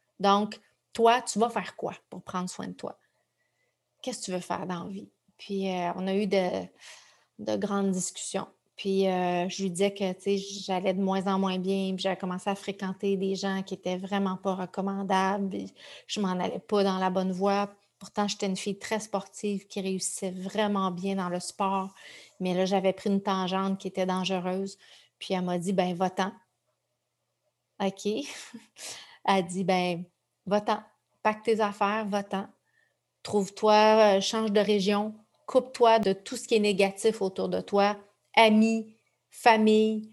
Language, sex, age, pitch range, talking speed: French, female, 30-49, 190-215 Hz, 180 wpm